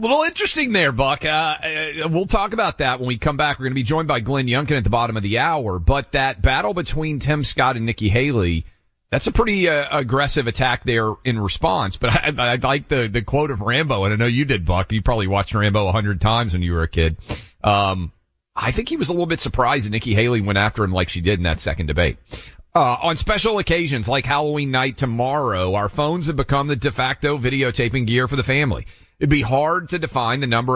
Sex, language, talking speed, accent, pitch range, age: male, English, 240 wpm, American, 105-140 Hz, 40-59